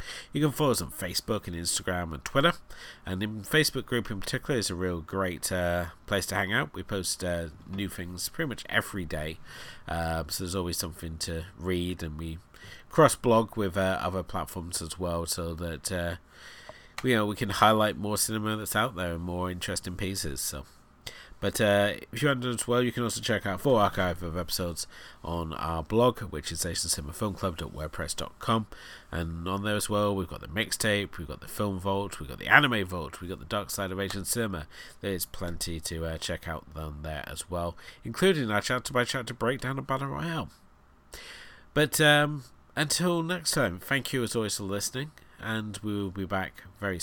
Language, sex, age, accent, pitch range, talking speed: English, male, 30-49, British, 85-110 Hz, 200 wpm